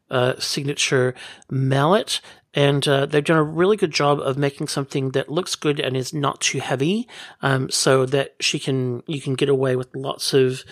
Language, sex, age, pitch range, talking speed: English, male, 40-59, 130-150 Hz, 190 wpm